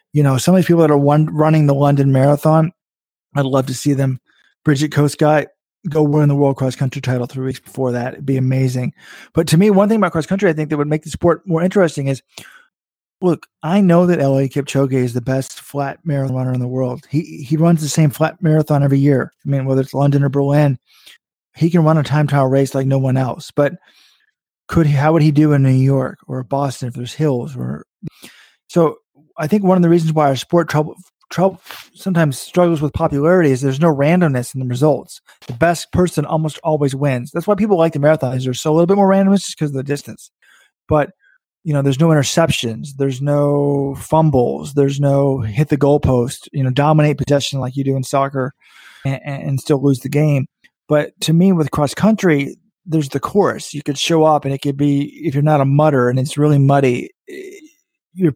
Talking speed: 220 wpm